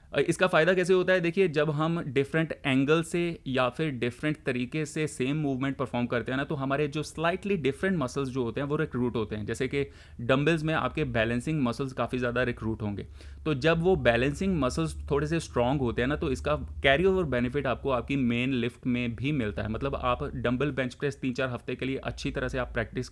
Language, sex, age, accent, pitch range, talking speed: Hindi, male, 30-49, native, 120-145 Hz, 220 wpm